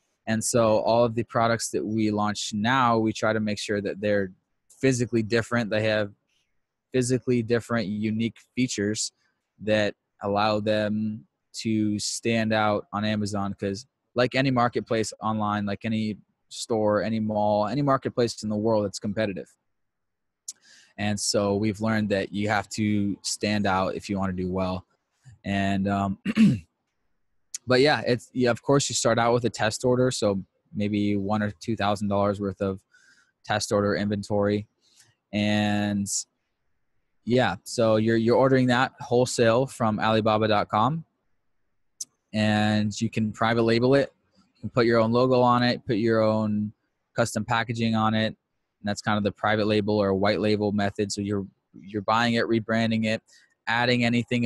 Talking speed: 160 wpm